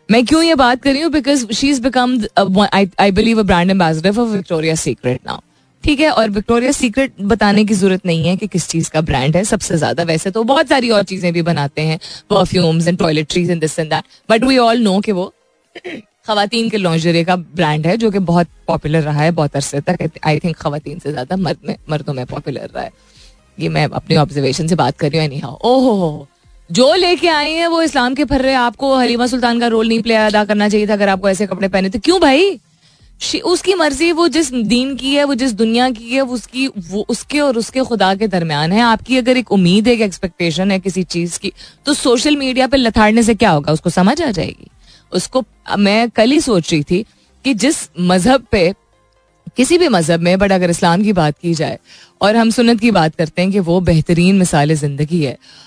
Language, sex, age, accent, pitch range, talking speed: Hindi, female, 20-39, native, 170-245 Hz, 210 wpm